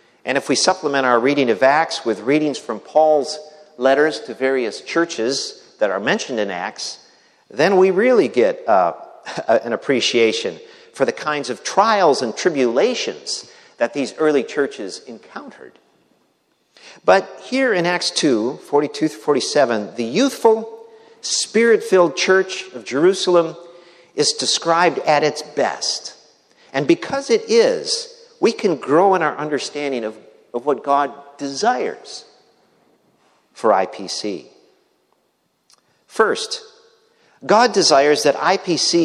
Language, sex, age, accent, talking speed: English, male, 50-69, American, 120 wpm